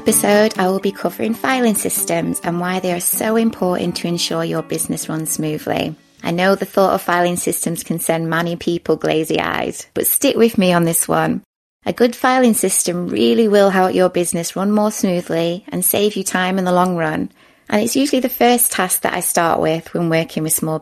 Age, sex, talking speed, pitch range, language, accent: 20-39, female, 210 wpm, 165-210 Hz, English, British